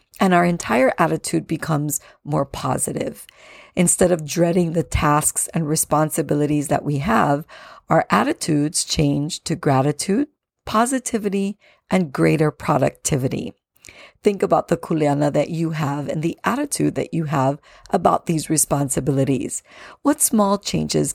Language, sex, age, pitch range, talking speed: English, female, 50-69, 150-185 Hz, 130 wpm